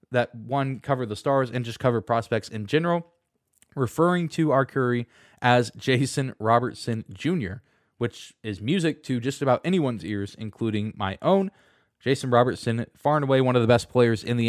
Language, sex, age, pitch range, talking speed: English, male, 20-39, 110-140 Hz, 175 wpm